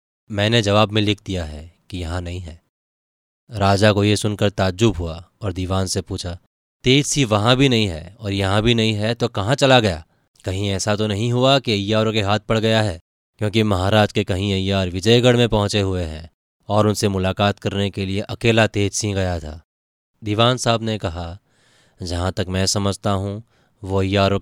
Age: 20-39